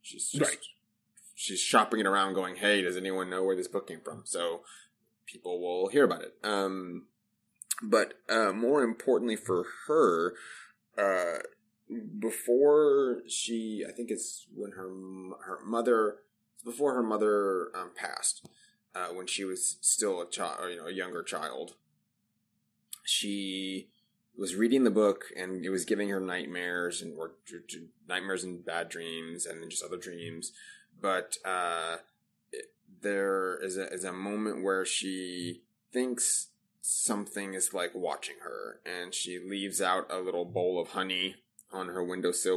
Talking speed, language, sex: 150 wpm, English, male